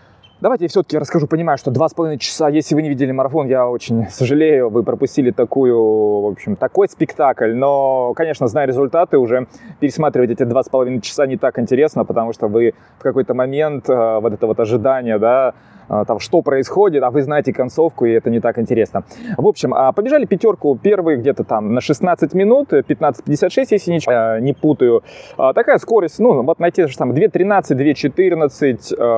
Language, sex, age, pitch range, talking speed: Russian, male, 20-39, 125-175 Hz, 175 wpm